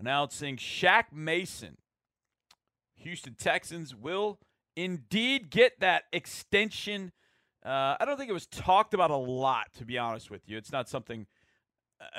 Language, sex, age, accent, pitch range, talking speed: English, male, 40-59, American, 120-170 Hz, 145 wpm